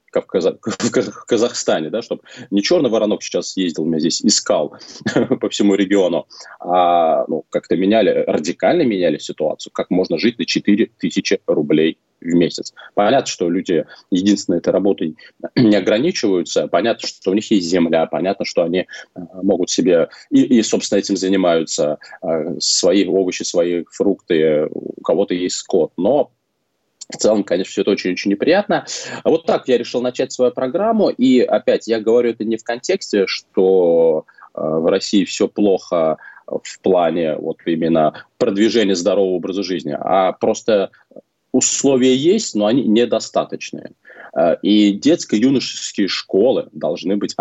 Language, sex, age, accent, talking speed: Russian, male, 20-39, native, 140 wpm